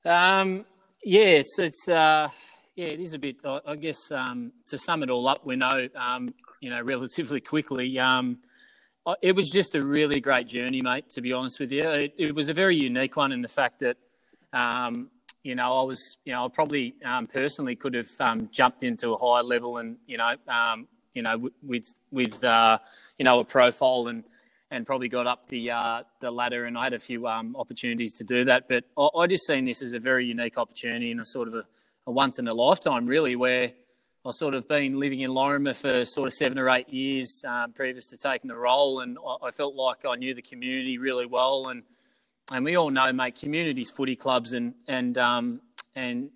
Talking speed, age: 215 wpm, 20-39